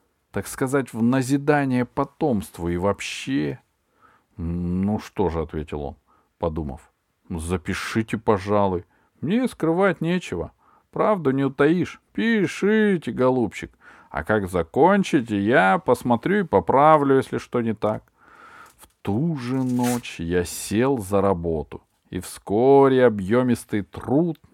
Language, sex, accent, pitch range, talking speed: Russian, male, native, 90-150 Hz, 110 wpm